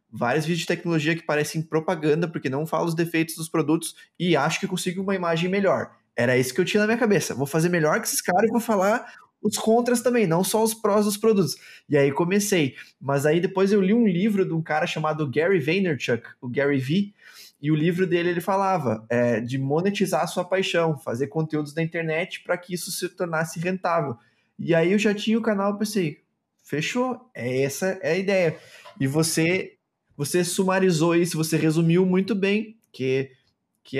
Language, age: Portuguese, 20-39